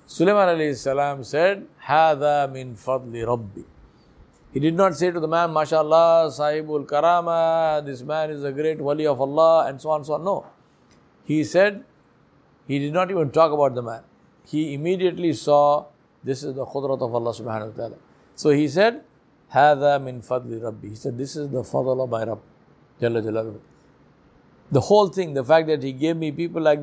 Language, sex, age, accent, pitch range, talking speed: English, male, 60-79, Indian, 125-165 Hz, 185 wpm